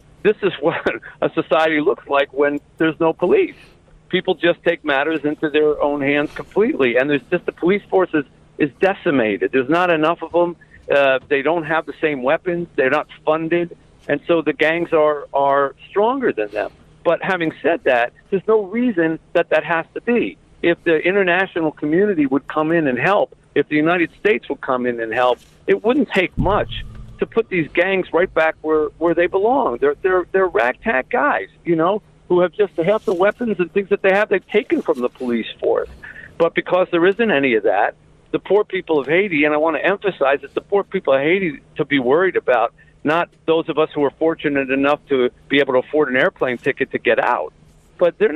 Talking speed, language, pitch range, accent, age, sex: 210 wpm, English, 145-190 Hz, American, 50-69, male